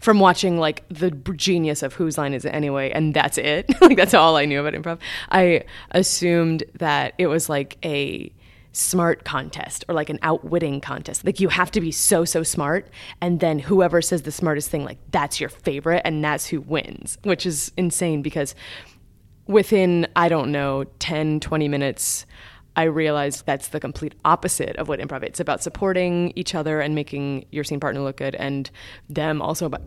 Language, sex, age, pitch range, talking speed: English, female, 20-39, 145-180 Hz, 190 wpm